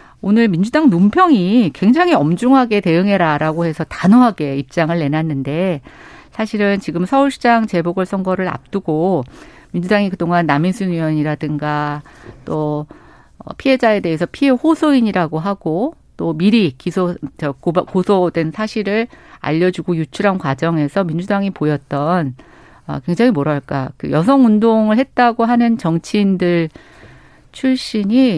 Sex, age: female, 50-69